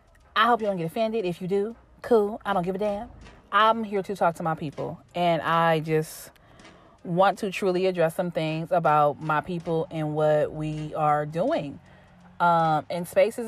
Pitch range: 165-210 Hz